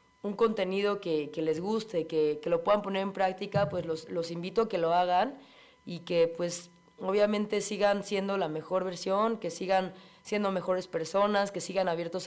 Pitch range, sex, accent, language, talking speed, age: 175-210 Hz, female, Mexican, Spanish, 185 wpm, 30-49